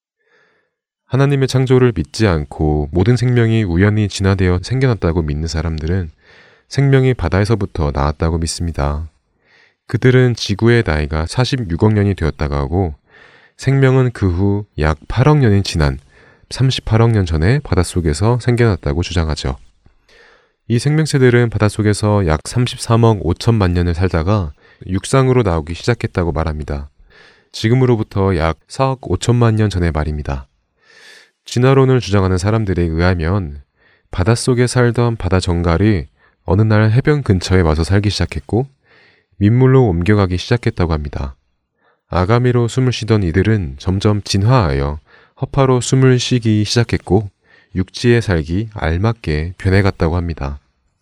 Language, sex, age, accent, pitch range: Korean, male, 30-49, native, 85-120 Hz